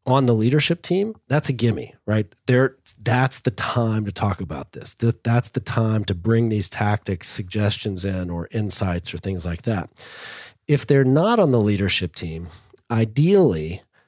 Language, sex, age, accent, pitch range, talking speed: English, male, 40-59, American, 100-130 Hz, 165 wpm